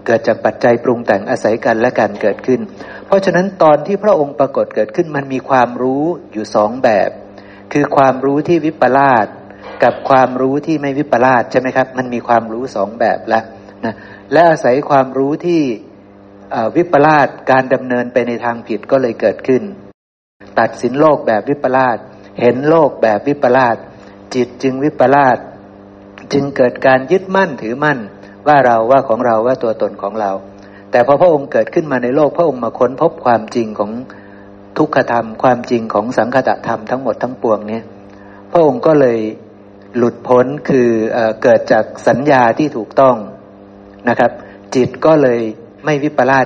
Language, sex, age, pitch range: Thai, male, 60-79, 110-140 Hz